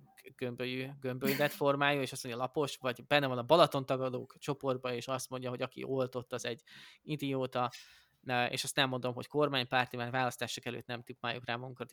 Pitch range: 120-145 Hz